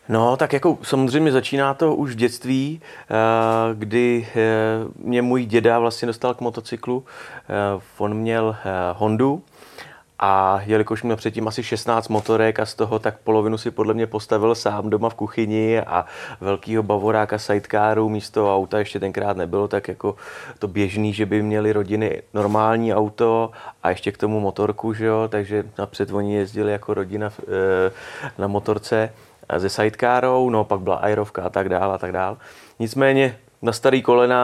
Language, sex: Czech, male